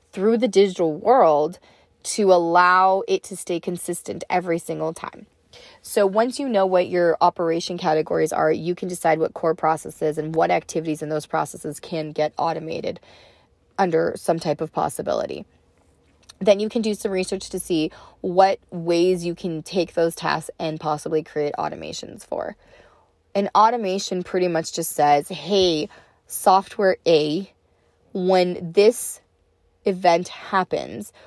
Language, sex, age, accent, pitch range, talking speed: English, female, 20-39, American, 160-195 Hz, 145 wpm